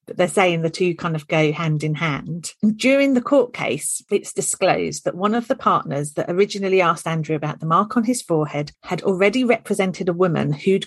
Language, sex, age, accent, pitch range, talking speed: English, female, 40-59, British, 160-210 Hz, 210 wpm